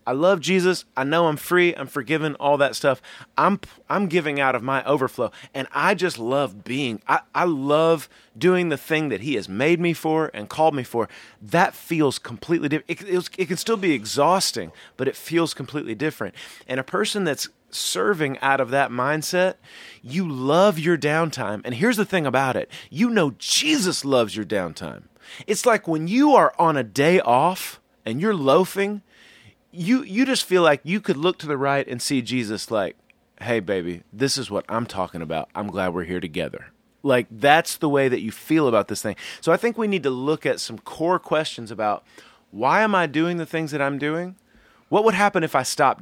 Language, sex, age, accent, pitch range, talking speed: English, male, 30-49, American, 125-175 Hz, 205 wpm